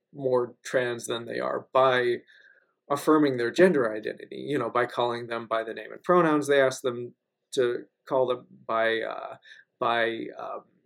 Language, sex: English, male